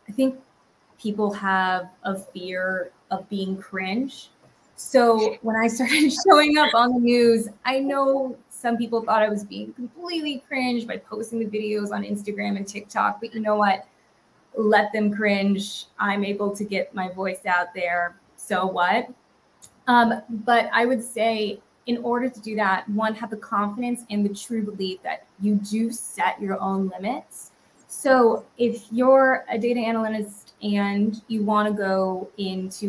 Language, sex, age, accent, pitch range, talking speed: English, female, 20-39, American, 195-235 Hz, 160 wpm